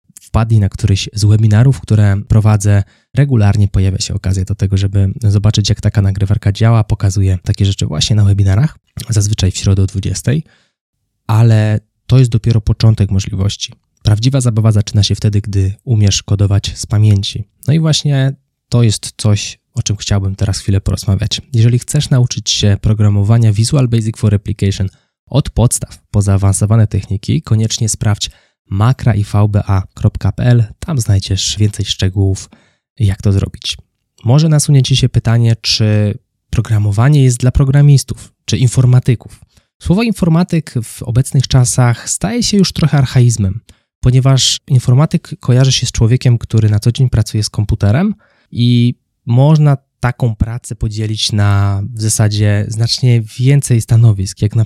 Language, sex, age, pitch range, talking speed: Polish, male, 20-39, 105-125 Hz, 145 wpm